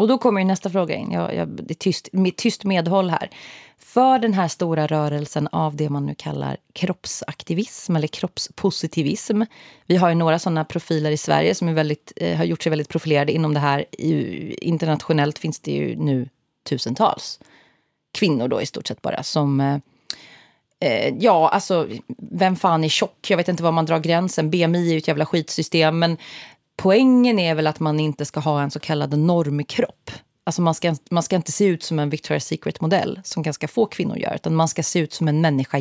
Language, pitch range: Swedish, 150-190 Hz